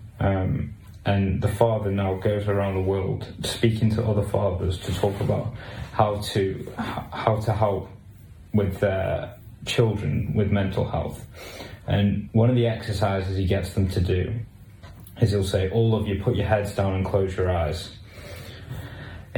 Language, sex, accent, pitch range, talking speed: English, male, British, 95-115 Hz, 160 wpm